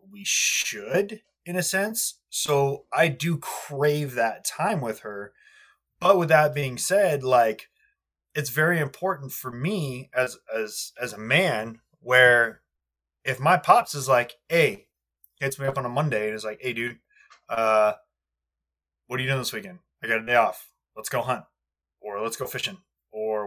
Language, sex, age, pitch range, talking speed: English, male, 20-39, 120-170 Hz, 170 wpm